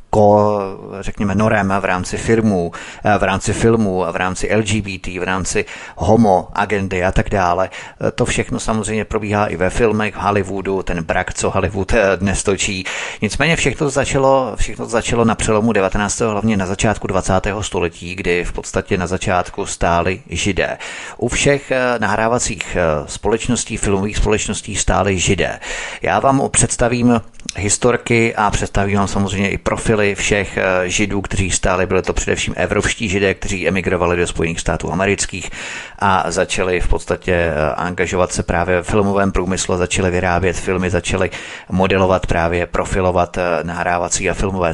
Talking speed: 140 wpm